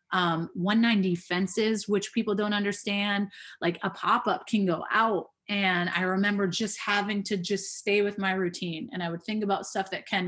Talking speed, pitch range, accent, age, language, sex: 195 wpm, 170-200 Hz, American, 30-49, English, female